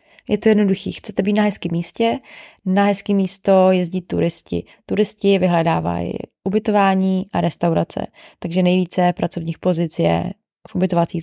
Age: 20-39